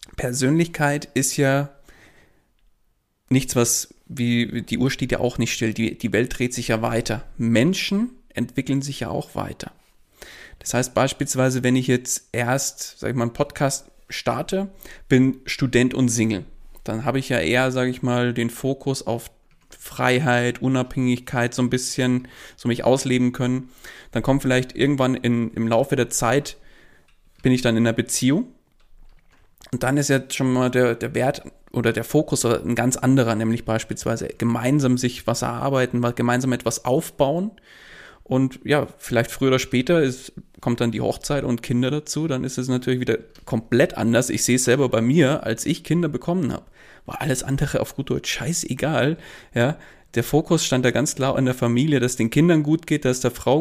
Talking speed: 180 wpm